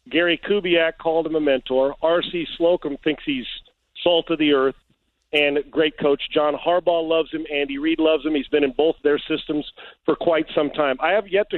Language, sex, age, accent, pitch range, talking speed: English, male, 50-69, American, 150-185 Hz, 200 wpm